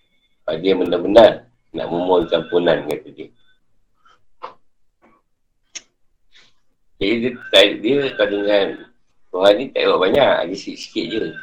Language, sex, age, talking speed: Malay, male, 50-69, 105 wpm